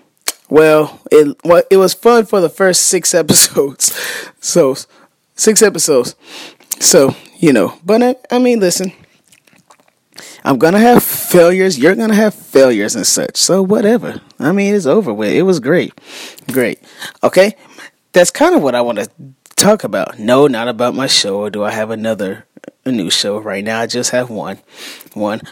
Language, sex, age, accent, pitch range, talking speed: English, male, 20-39, American, 145-225 Hz, 175 wpm